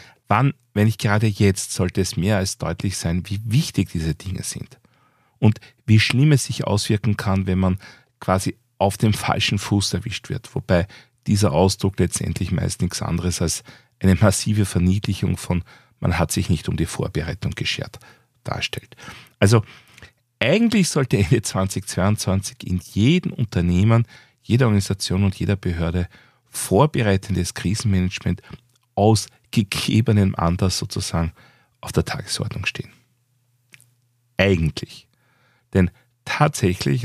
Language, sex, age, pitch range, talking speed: German, male, 40-59, 95-125 Hz, 130 wpm